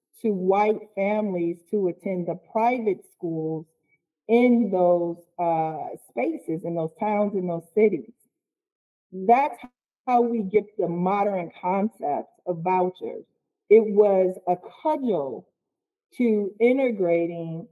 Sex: female